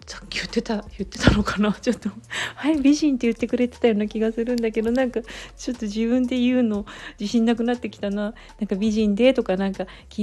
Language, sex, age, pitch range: Japanese, female, 40-59, 195-245 Hz